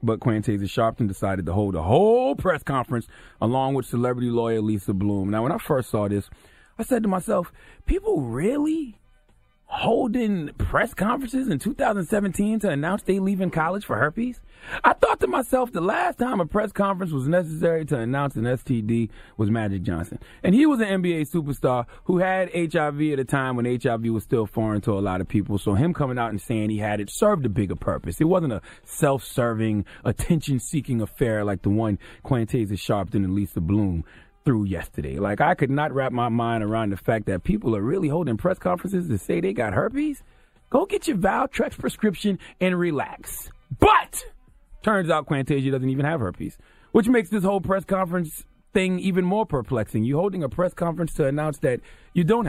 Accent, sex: American, male